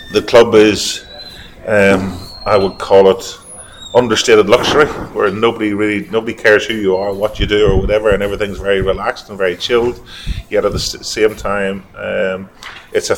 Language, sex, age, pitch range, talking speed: English, male, 30-49, 95-110 Hz, 180 wpm